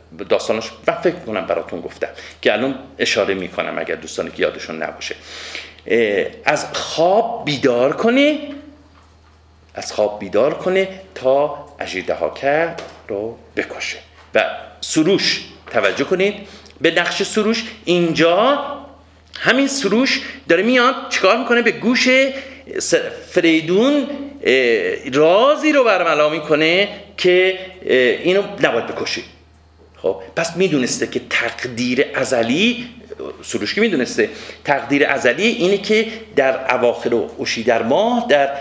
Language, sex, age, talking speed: Persian, male, 50-69, 110 wpm